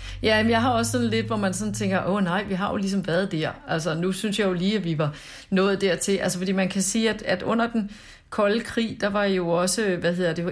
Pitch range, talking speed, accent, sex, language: 175-205 Hz, 275 wpm, native, female, Danish